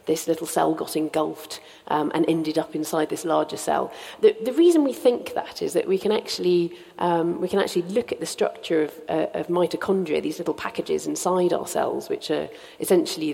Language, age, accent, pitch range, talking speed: English, 40-59, British, 160-220 Hz, 205 wpm